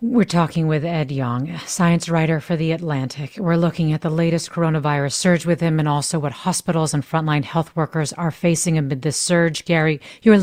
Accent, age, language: American, 40-59, English